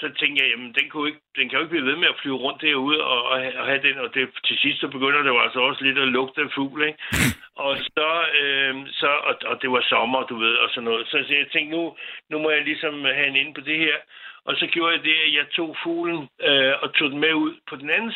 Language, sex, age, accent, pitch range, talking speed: Danish, male, 60-79, native, 135-170 Hz, 275 wpm